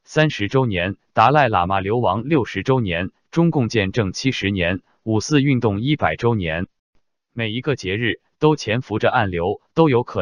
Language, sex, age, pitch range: Chinese, male, 20-39, 100-130 Hz